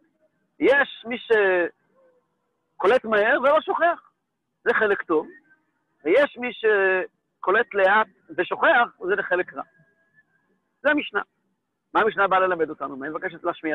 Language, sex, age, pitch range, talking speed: English, male, 50-69, 170-260 Hz, 120 wpm